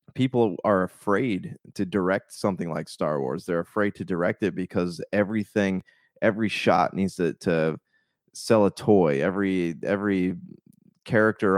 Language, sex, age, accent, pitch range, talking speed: English, male, 20-39, American, 90-105 Hz, 140 wpm